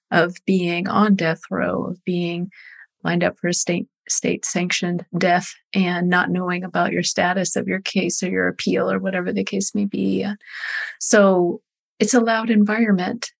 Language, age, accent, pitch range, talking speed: English, 40-59, American, 170-195 Hz, 175 wpm